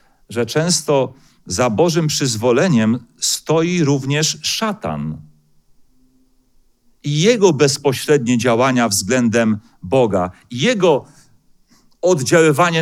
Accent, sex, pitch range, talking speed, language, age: native, male, 110-150 Hz, 75 wpm, Polish, 40-59